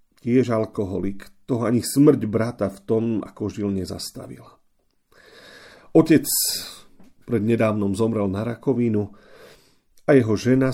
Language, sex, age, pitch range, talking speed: Slovak, male, 40-59, 105-135 Hz, 110 wpm